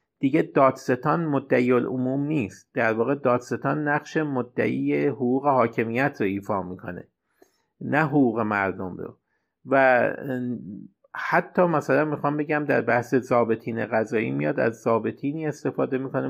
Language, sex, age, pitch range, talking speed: Persian, male, 50-69, 110-140 Hz, 120 wpm